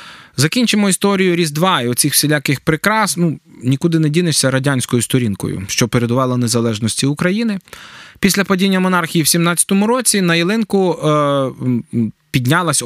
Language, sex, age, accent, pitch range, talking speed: Ukrainian, male, 20-39, native, 145-185 Hz, 125 wpm